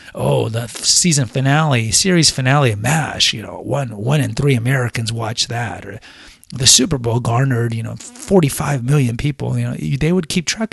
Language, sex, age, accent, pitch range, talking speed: English, male, 30-49, American, 115-140 Hz, 190 wpm